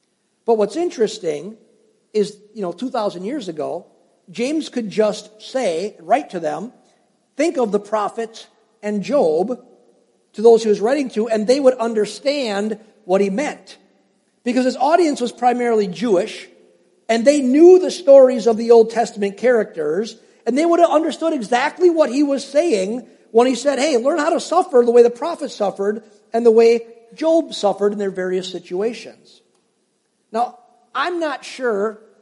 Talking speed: 160 wpm